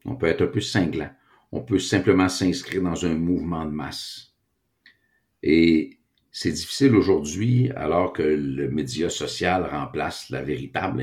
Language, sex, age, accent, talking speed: French, male, 60-79, Canadian, 145 wpm